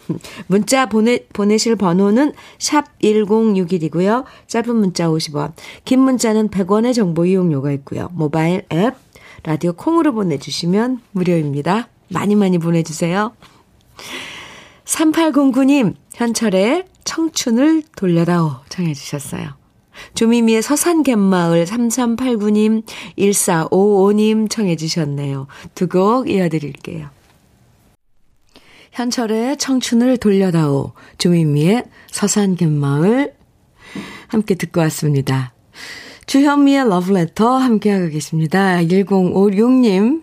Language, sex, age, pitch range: Korean, female, 40-59, 165-230 Hz